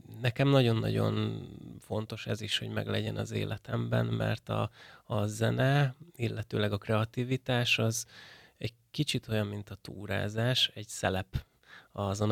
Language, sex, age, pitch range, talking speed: Hungarian, male, 20-39, 105-120 Hz, 125 wpm